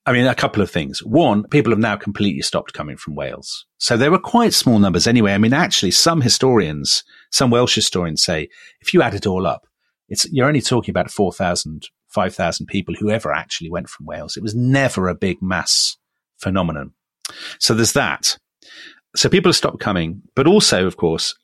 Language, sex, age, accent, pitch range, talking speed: English, male, 40-59, British, 90-130 Hz, 195 wpm